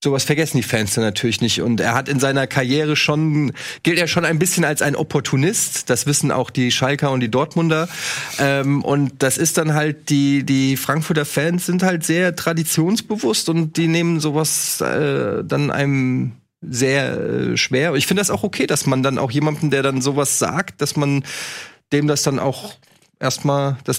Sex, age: male, 30-49